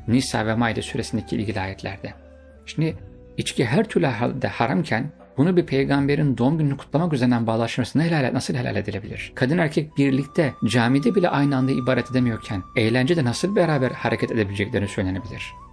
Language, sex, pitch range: Turkish, male, 110-135 Hz